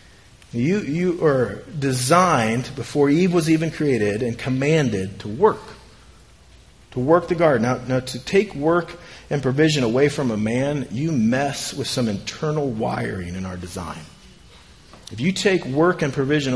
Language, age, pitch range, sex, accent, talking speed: English, 40-59, 115-155 Hz, male, American, 155 wpm